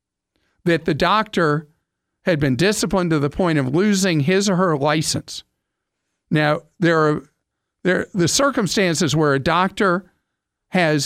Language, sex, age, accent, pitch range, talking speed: English, male, 50-69, American, 145-185 Hz, 135 wpm